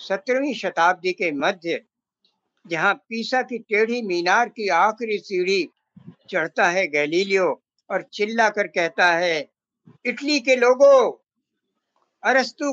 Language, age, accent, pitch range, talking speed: Hindi, 60-79, native, 170-250 Hz, 95 wpm